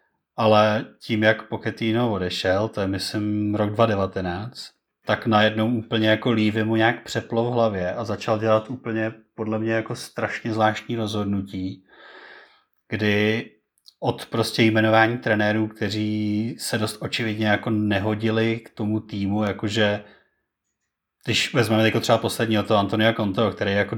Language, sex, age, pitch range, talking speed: Czech, male, 30-49, 105-115 Hz, 140 wpm